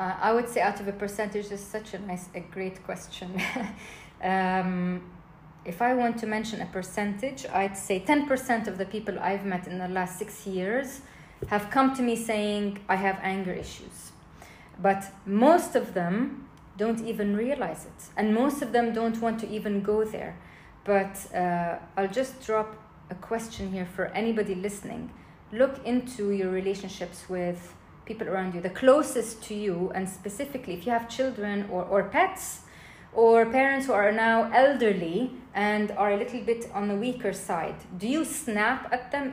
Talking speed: 175 wpm